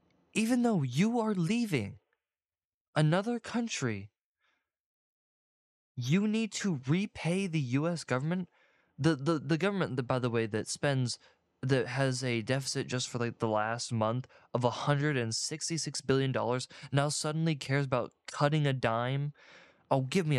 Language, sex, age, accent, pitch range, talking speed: English, male, 20-39, American, 115-145 Hz, 155 wpm